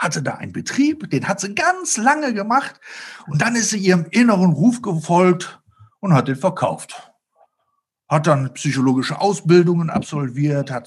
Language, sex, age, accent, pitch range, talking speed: German, male, 50-69, German, 140-185 Hz, 155 wpm